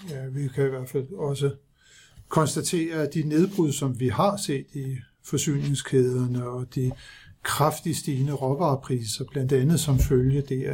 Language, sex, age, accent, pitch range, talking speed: Danish, male, 60-79, native, 135-155 Hz, 150 wpm